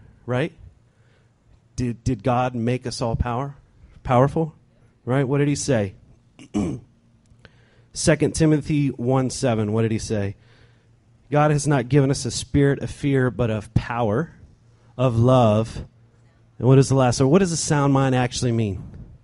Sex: male